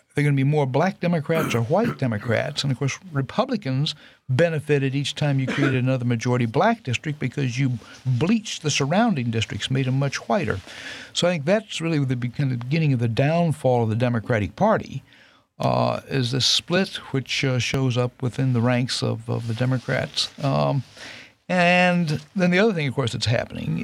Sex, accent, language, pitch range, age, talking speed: male, American, English, 125-160 Hz, 60-79, 180 wpm